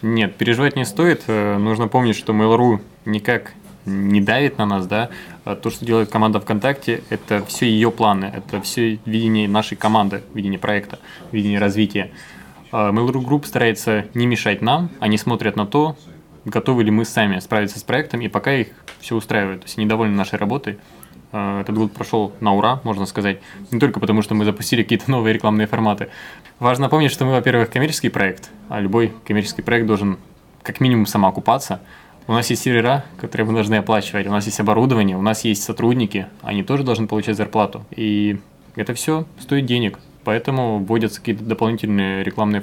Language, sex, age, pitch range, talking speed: Ukrainian, male, 20-39, 105-120 Hz, 175 wpm